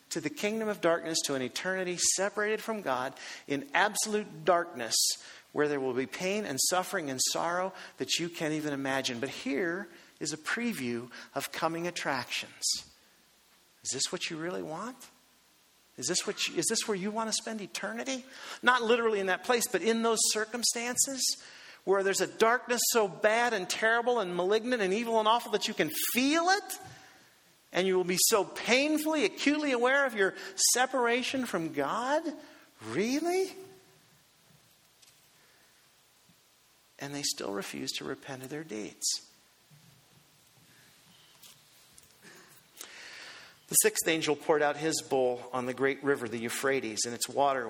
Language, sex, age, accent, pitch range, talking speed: English, male, 50-69, American, 135-230 Hz, 150 wpm